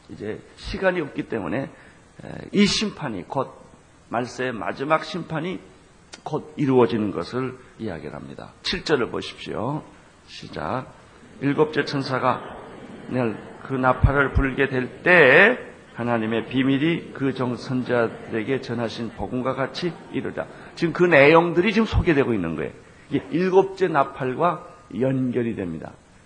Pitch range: 125-165 Hz